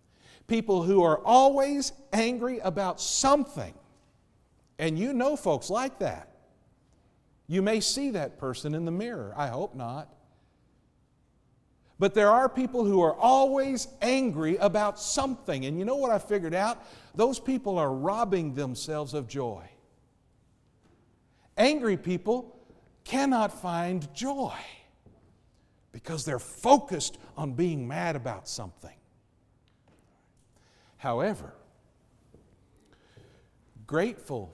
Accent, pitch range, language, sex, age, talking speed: American, 130-215 Hz, English, male, 50-69, 110 wpm